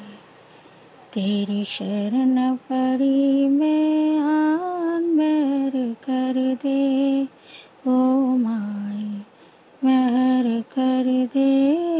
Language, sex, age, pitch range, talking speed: Hindi, female, 20-39, 235-305 Hz, 60 wpm